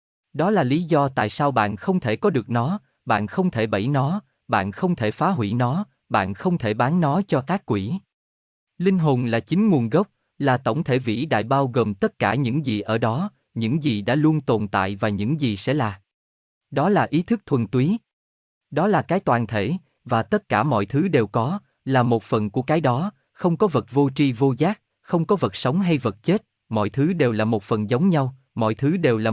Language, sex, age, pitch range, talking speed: Vietnamese, male, 20-39, 110-165 Hz, 225 wpm